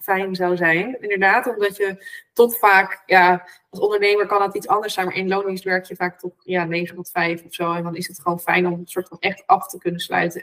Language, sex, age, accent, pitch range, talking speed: Dutch, female, 20-39, Dutch, 185-240 Hz, 245 wpm